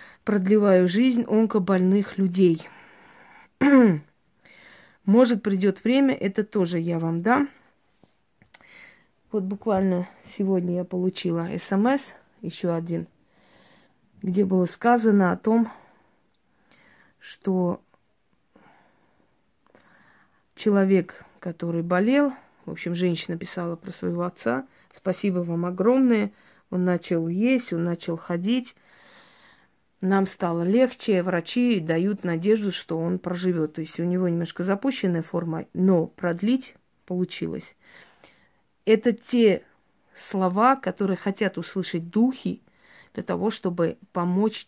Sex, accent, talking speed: female, native, 100 wpm